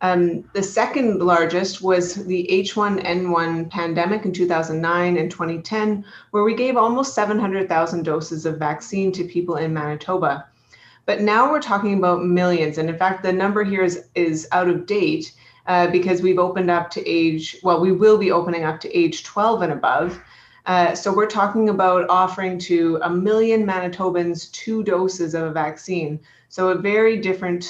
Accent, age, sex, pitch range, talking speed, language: American, 30-49, female, 170-200 Hz, 170 wpm, English